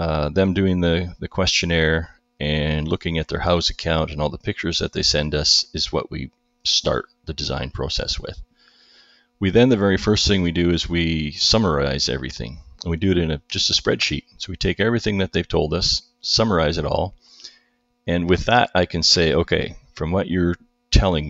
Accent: American